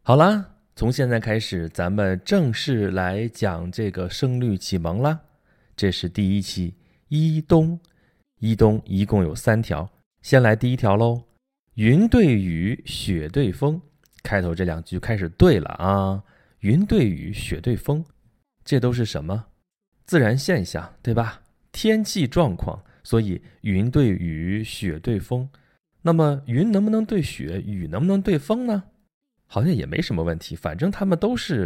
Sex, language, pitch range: male, Chinese, 95-145 Hz